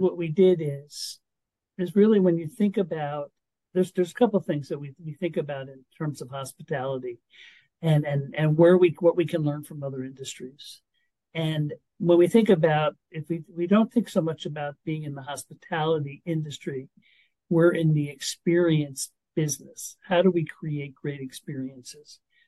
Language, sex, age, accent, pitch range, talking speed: English, male, 60-79, American, 150-180 Hz, 175 wpm